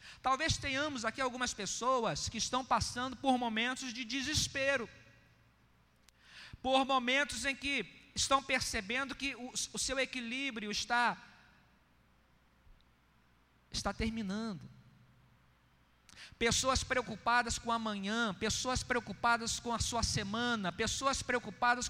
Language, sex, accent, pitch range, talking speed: Portuguese, male, Brazilian, 170-255 Hz, 105 wpm